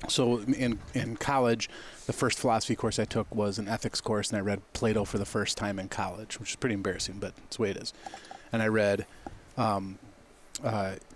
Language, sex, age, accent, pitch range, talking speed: English, male, 30-49, American, 105-125 Hz, 210 wpm